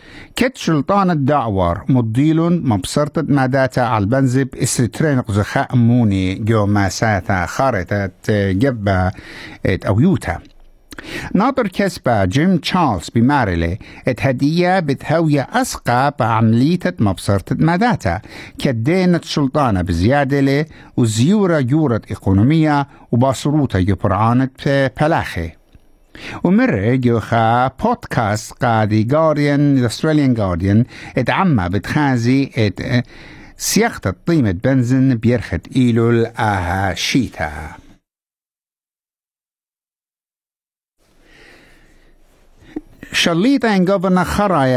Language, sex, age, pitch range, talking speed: English, male, 60-79, 110-155 Hz, 60 wpm